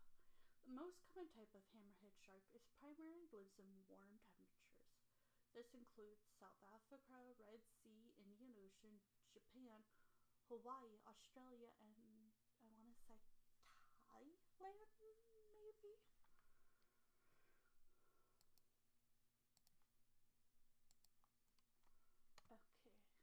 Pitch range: 195-250 Hz